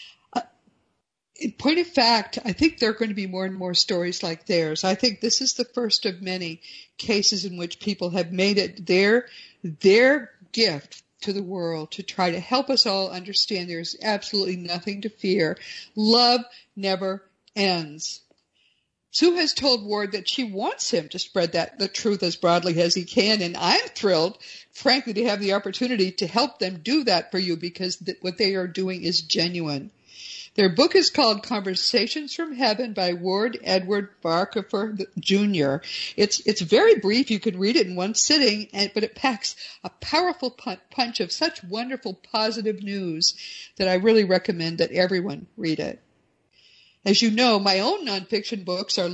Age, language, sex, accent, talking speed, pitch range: 50-69, English, female, American, 175 wpm, 185-235 Hz